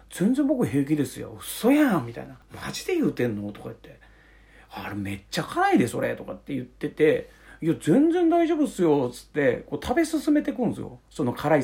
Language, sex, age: Japanese, male, 40-59